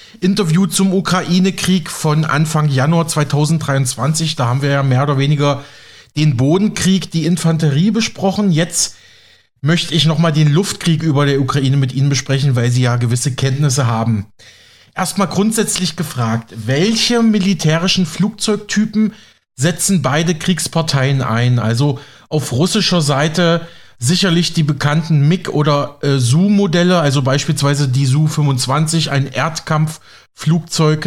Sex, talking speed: male, 125 wpm